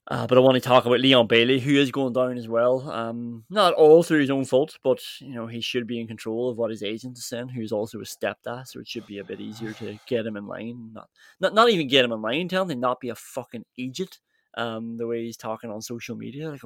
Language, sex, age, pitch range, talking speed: English, male, 20-39, 120-155 Hz, 275 wpm